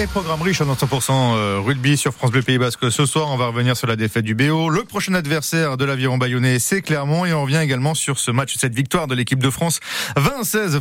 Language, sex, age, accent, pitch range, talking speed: French, male, 40-59, French, 125-160 Hz, 235 wpm